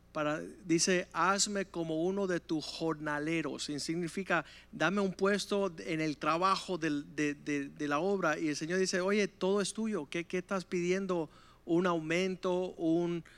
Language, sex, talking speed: Spanish, male, 165 wpm